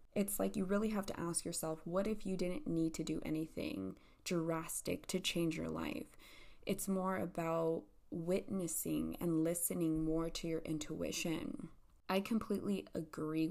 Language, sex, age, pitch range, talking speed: English, female, 20-39, 160-195 Hz, 150 wpm